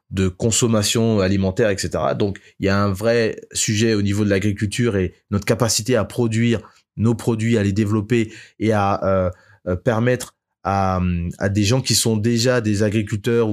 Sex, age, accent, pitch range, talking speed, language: male, 20-39, French, 100-125 Hz, 175 wpm, French